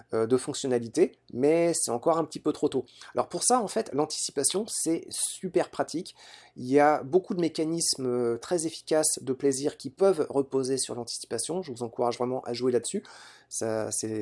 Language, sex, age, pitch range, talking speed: French, male, 30-49, 125-165 Hz, 180 wpm